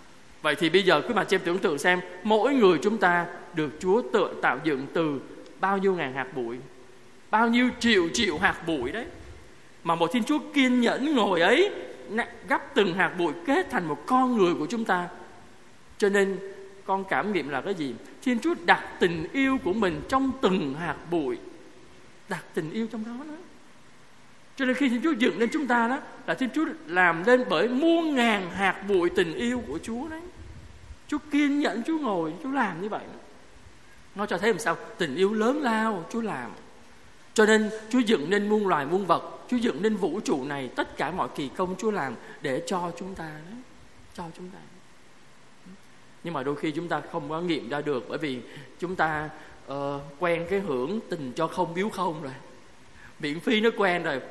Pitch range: 170-245 Hz